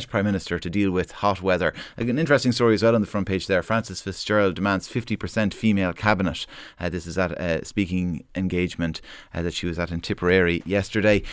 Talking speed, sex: 205 wpm, male